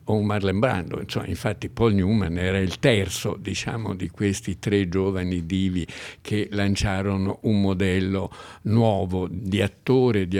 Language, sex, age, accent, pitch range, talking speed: Italian, male, 60-79, native, 95-115 Hz, 135 wpm